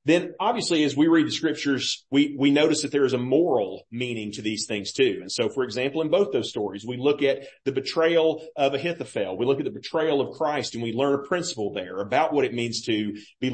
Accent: American